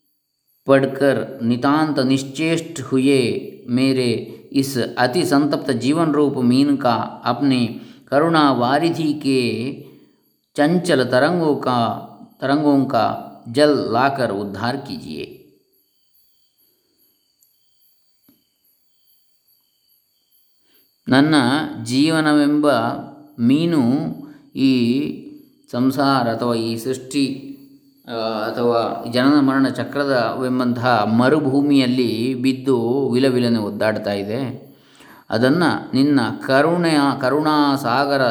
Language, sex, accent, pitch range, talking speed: English, male, Indian, 120-140 Hz, 70 wpm